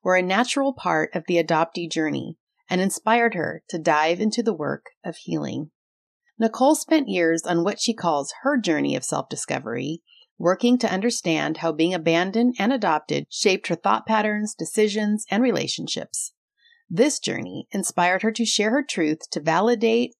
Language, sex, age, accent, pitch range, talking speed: English, female, 30-49, American, 170-235 Hz, 160 wpm